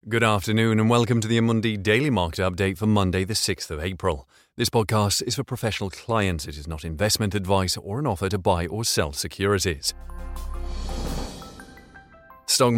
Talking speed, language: 170 wpm, English